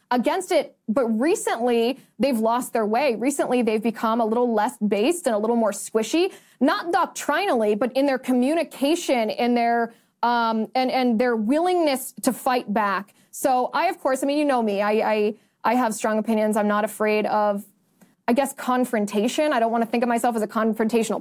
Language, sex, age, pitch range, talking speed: English, female, 20-39, 220-265 Hz, 185 wpm